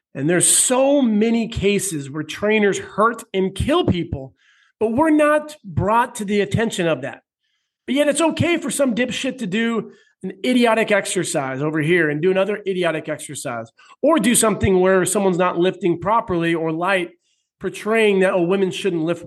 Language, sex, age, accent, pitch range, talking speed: English, male, 40-59, American, 160-210 Hz, 170 wpm